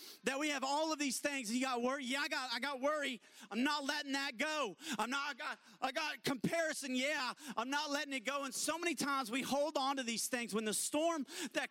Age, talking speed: 40-59, 245 wpm